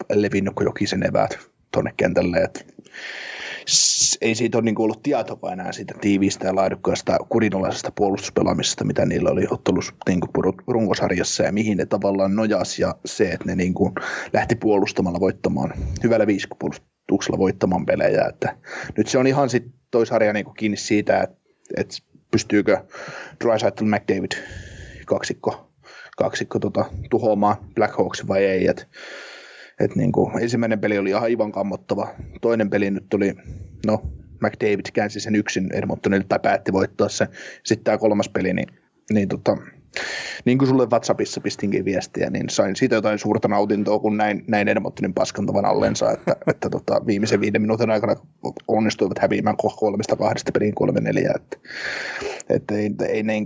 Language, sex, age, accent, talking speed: Finnish, male, 30-49, native, 130 wpm